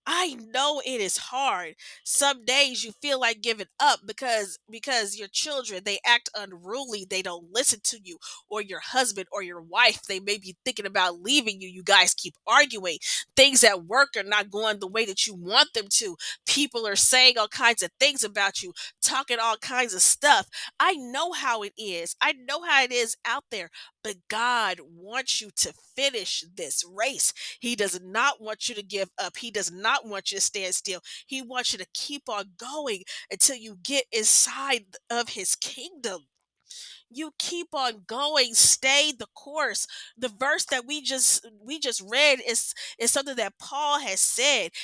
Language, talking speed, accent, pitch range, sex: English, 185 wpm, American, 205-280 Hz, female